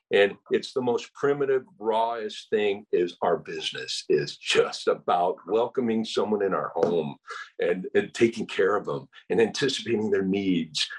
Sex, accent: male, American